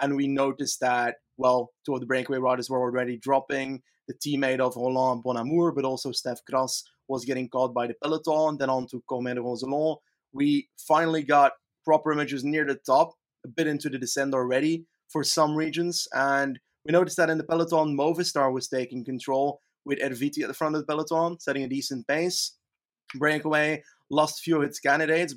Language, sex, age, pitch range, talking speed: English, male, 30-49, 130-155 Hz, 190 wpm